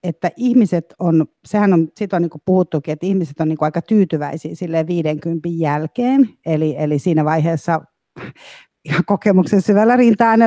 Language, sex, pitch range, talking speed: Finnish, female, 160-200 Hz, 140 wpm